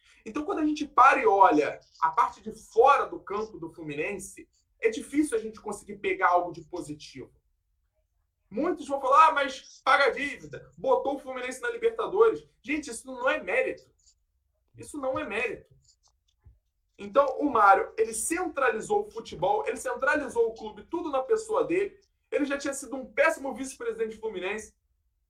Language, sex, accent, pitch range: Portuguese, male, Brazilian, 220-330 Hz